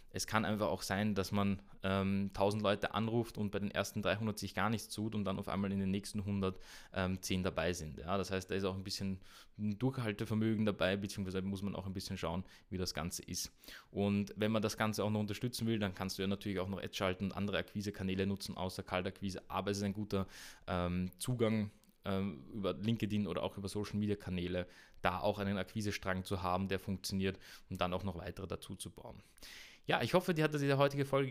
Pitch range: 95-110 Hz